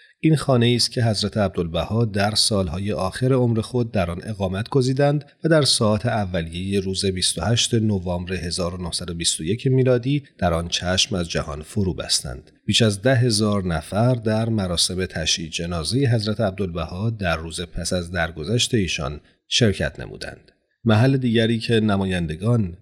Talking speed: 140 wpm